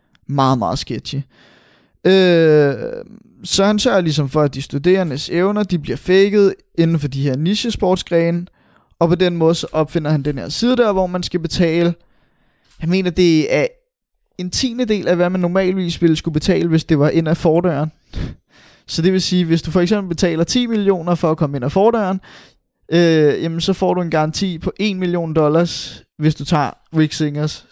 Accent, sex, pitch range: native, male, 150-190 Hz